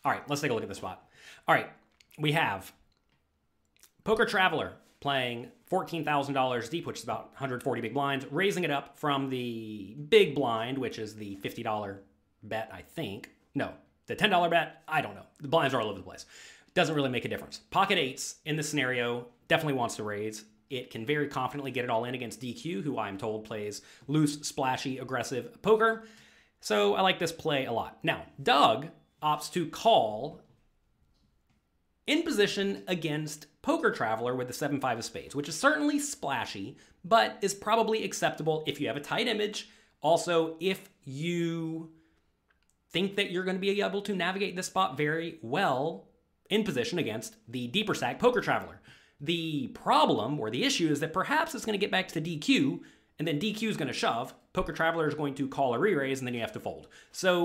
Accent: American